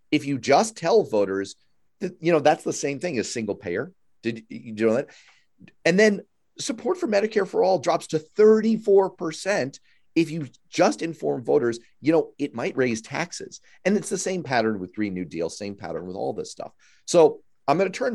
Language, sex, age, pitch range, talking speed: English, male, 40-59, 115-165 Hz, 200 wpm